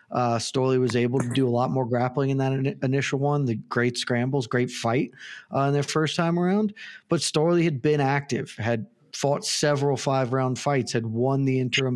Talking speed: 195 wpm